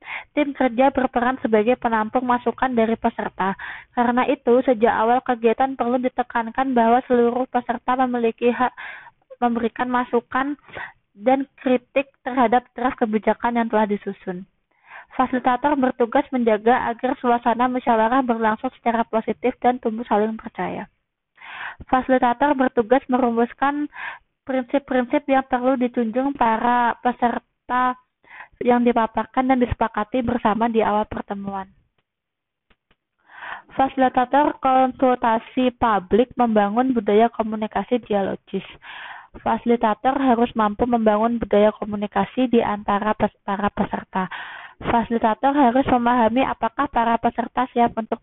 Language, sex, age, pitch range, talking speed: Indonesian, female, 20-39, 220-255 Hz, 105 wpm